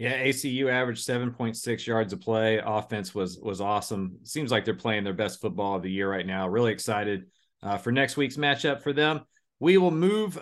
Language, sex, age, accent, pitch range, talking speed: English, male, 40-59, American, 115-145 Hz, 200 wpm